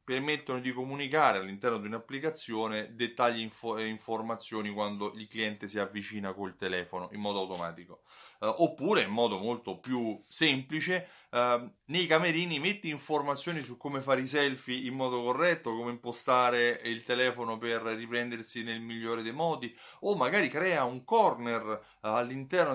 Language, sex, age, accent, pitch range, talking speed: Italian, male, 30-49, native, 110-135 Hz, 140 wpm